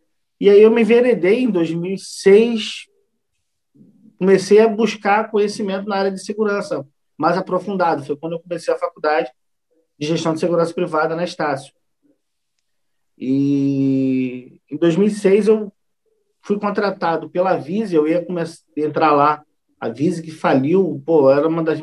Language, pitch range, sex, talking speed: Portuguese, 155-205 Hz, male, 145 wpm